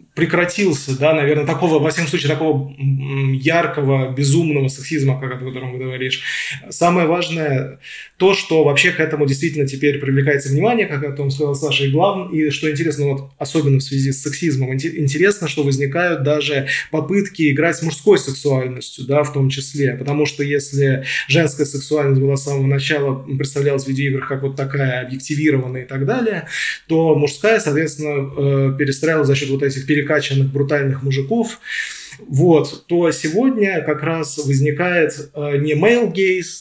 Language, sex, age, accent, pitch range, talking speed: Russian, male, 20-39, native, 140-160 Hz, 165 wpm